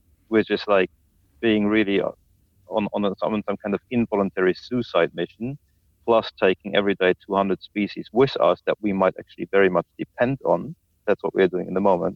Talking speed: 180 wpm